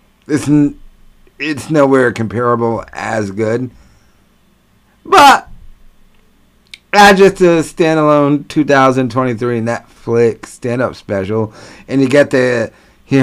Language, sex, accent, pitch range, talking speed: English, male, American, 105-150 Hz, 120 wpm